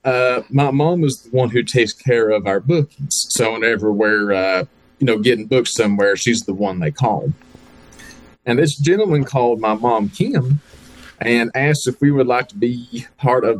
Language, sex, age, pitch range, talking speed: English, male, 30-49, 110-145 Hz, 190 wpm